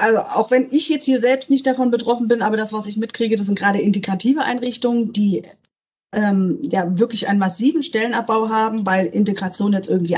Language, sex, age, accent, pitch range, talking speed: German, female, 30-49, German, 200-240 Hz, 195 wpm